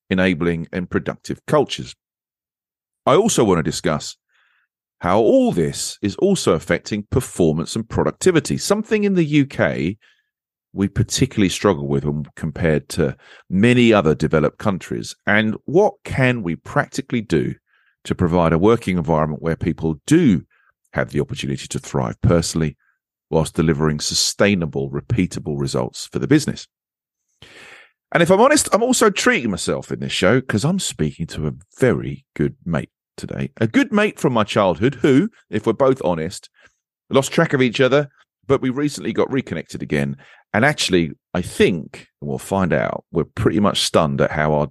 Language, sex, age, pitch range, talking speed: English, male, 40-59, 80-130 Hz, 155 wpm